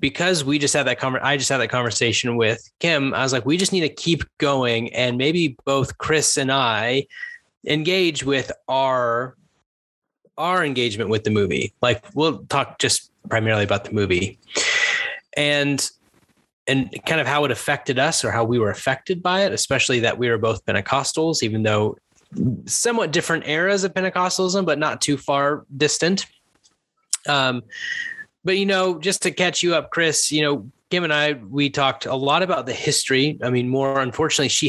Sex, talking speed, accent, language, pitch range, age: male, 180 wpm, American, English, 120-170 Hz, 20-39